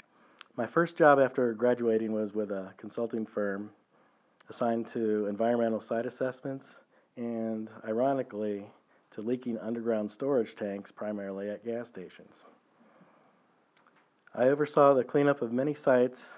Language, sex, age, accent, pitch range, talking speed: English, male, 40-59, American, 105-130 Hz, 120 wpm